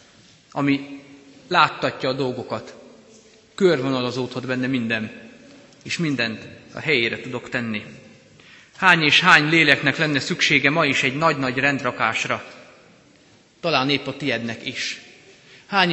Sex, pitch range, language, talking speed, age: male, 130-170 Hz, Hungarian, 115 wpm, 30-49